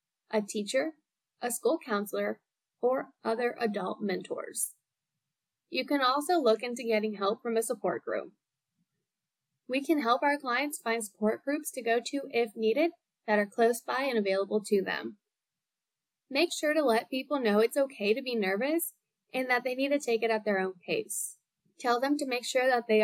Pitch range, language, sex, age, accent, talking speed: 210-260 Hz, English, female, 10-29, American, 180 wpm